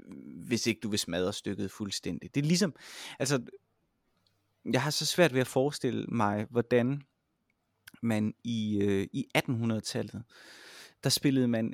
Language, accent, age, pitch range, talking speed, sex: Danish, native, 30-49, 105-130 Hz, 140 wpm, male